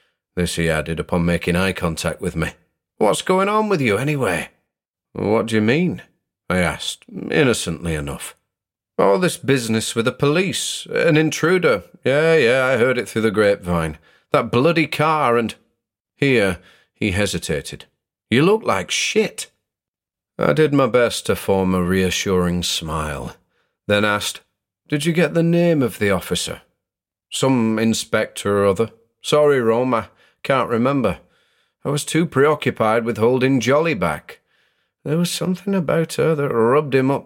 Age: 40-59